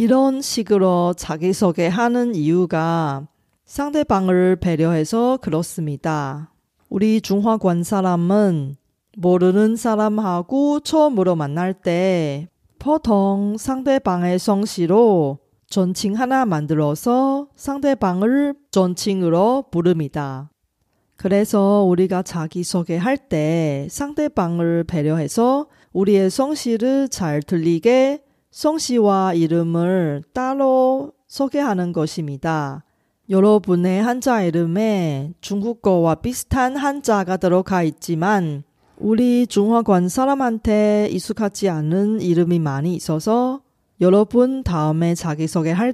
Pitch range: 165-235 Hz